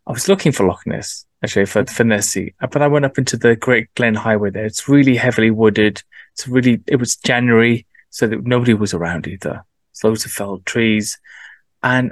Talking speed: 205 wpm